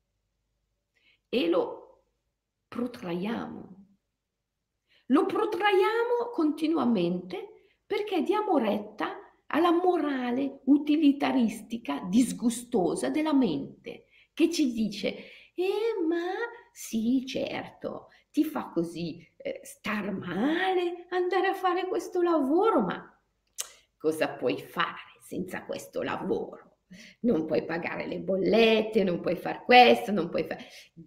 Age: 50-69